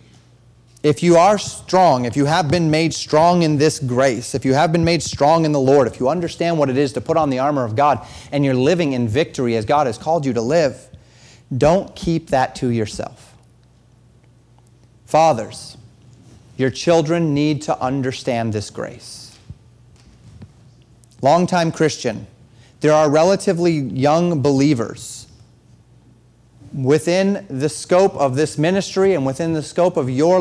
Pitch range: 120-155 Hz